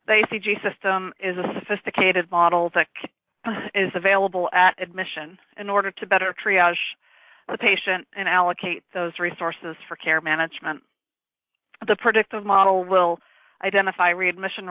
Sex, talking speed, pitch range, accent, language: female, 130 wpm, 170-200 Hz, American, English